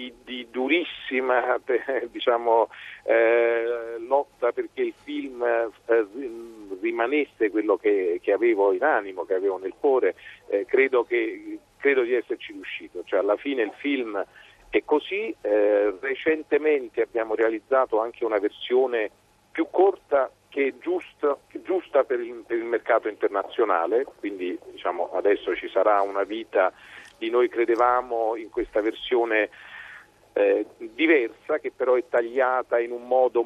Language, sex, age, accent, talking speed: Italian, male, 50-69, native, 135 wpm